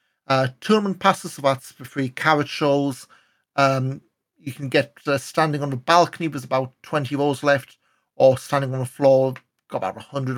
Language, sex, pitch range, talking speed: English, male, 135-165 Hz, 180 wpm